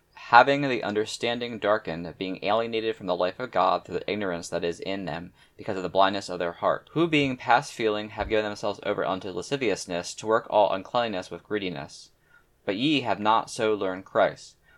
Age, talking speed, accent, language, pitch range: 10-29, 195 wpm, American, English, 95-115 Hz